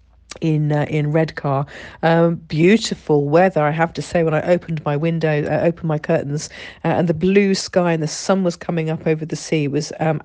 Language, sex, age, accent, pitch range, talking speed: English, female, 40-59, British, 150-175 Hz, 225 wpm